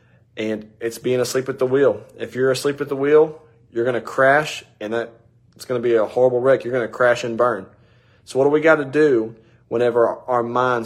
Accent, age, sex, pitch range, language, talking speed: American, 30-49, male, 115-150 Hz, English, 230 wpm